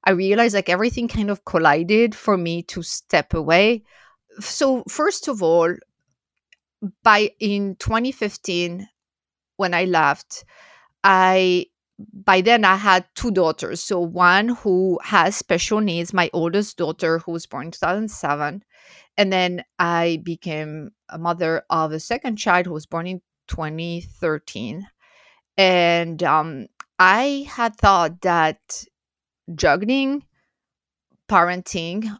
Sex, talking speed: female, 125 wpm